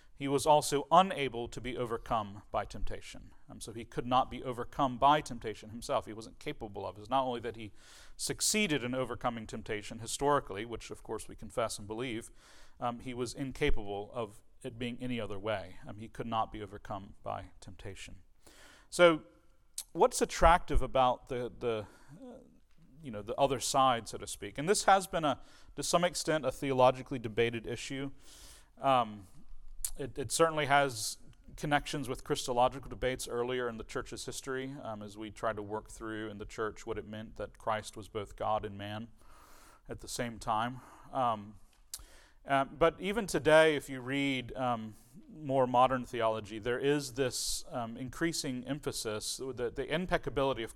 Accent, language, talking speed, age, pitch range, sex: American, English, 175 wpm, 40-59, 110-140 Hz, male